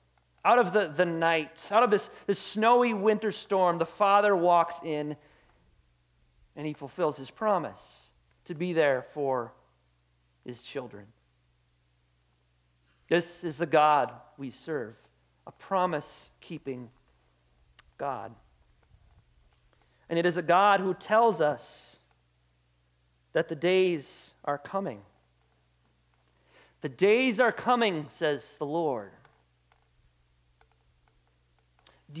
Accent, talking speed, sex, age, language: American, 105 wpm, male, 40-59, English